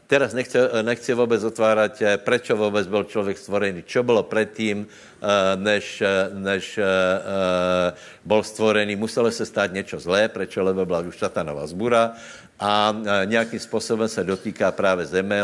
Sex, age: male, 60-79